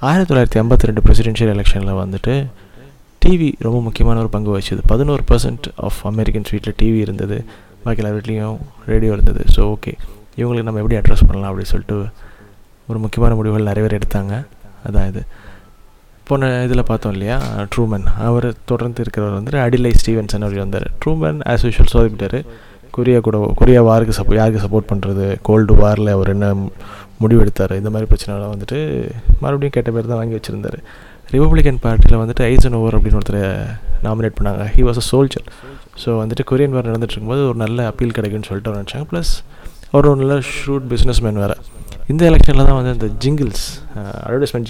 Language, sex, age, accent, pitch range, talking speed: Tamil, male, 20-39, native, 105-120 Hz, 160 wpm